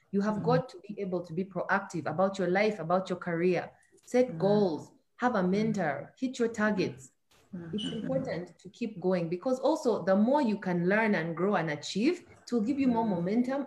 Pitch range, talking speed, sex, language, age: 175-225 Hz, 195 wpm, female, English, 30-49